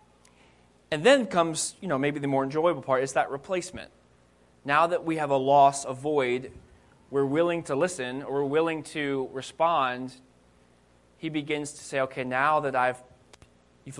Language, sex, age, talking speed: English, male, 20-39, 165 wpm